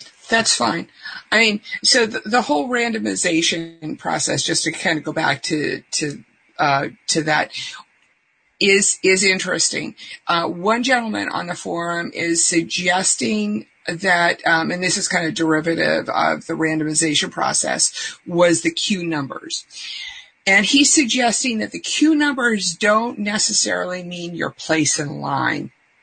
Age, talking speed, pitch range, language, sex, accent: 50-69, 145 wpm, 165-210 Hz, English, female, American